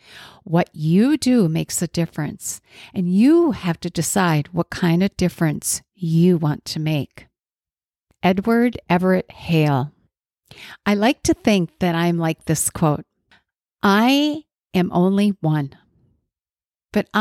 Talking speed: 125 wpm